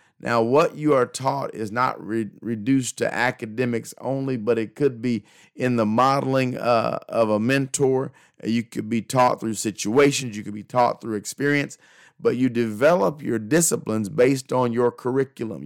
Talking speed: 165 wpm